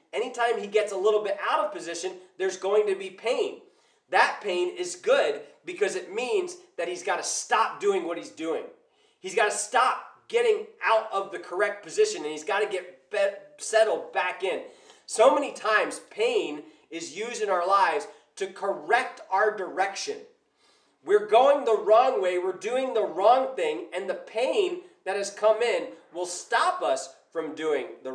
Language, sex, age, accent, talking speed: English, male, 30-49, American, 180 wpm